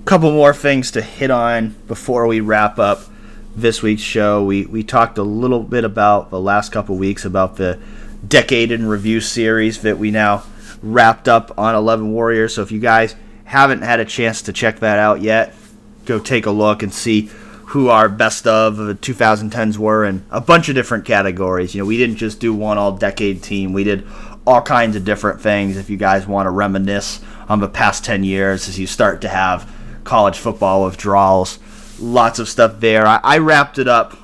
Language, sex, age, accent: English, male, 30-49, American